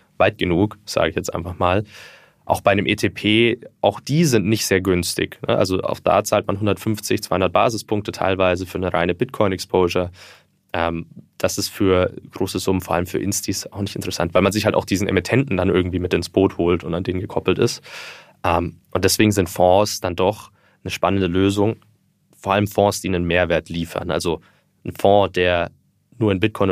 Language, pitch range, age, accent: German, 90-105 Hz, 20-39, German